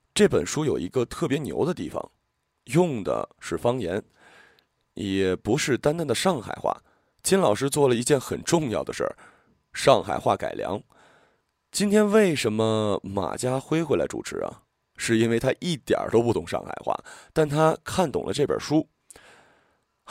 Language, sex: Chinese, male